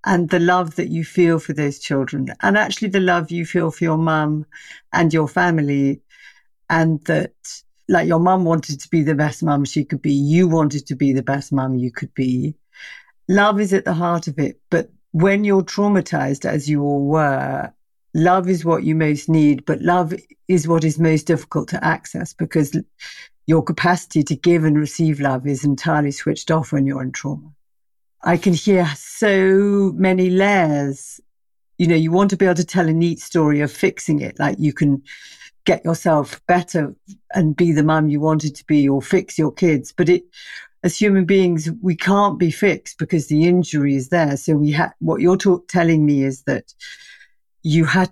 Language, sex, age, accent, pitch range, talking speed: English, female, 50-69, British, 150-180 Hz, 195 wpm